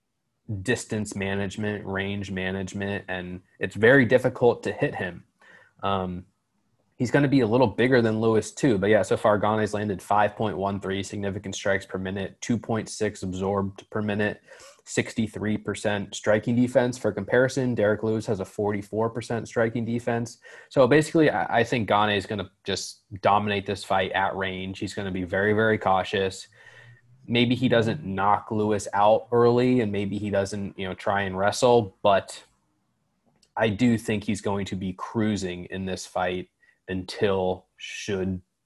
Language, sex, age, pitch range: English, male, 20-39, 95-115 Hz